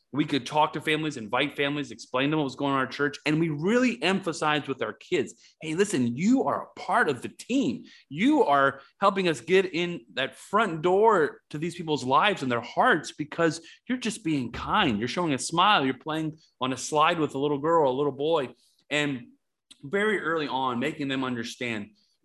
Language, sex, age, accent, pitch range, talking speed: English, male, 30-49, American, 125-165 Hz, 215 wpm